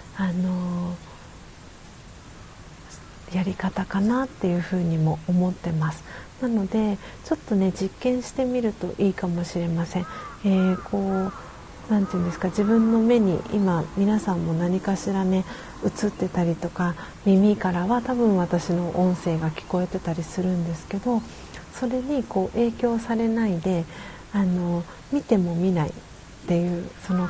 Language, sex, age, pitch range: Japanese, female, 40-59, 175-220 Hz